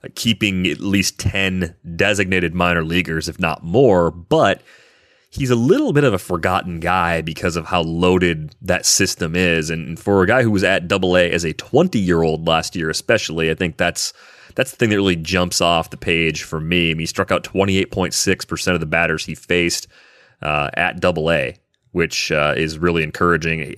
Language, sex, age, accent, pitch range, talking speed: English, male, 30-49, American, 85-100 Hz, 185 wpm